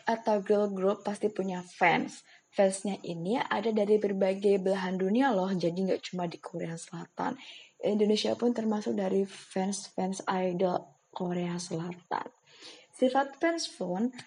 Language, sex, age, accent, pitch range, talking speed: Indonesian, female, 20-39, native, 185-225 Hz, 130 wpm